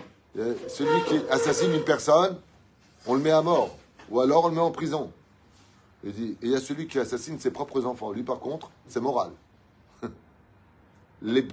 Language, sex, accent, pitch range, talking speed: French, male, French, 100-145 Hz, 170 wpm